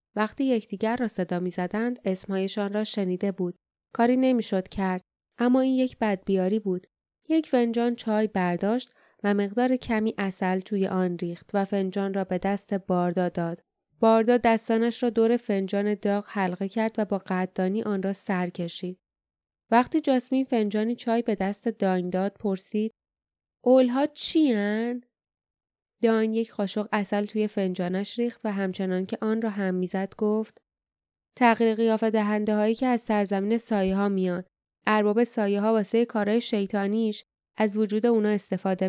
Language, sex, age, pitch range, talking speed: Persian, female, 10-29, 195-230 Hz, 145 wpm